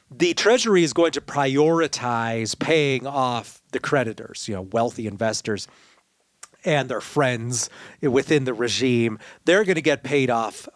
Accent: American